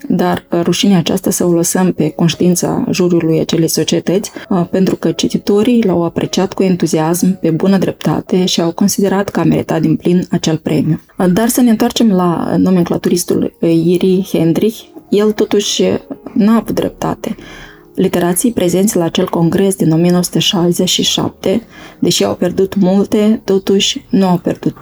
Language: Romanian